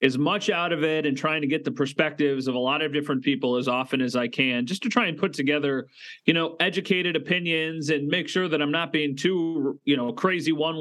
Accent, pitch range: American, 135-180 Hz